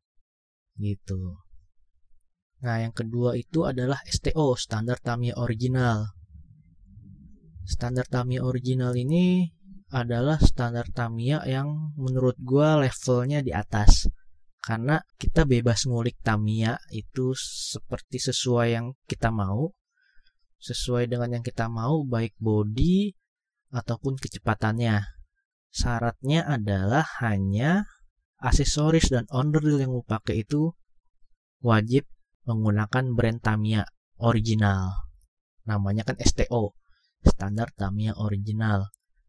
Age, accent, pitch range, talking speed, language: 20-39, native, 100-130 Hz, 100 wpm, Indonesian